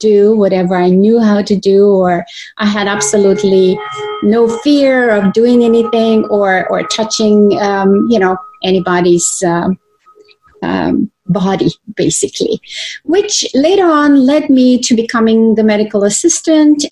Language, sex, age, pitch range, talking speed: English, female, 30-49, 195-255 Hz, 130 wpm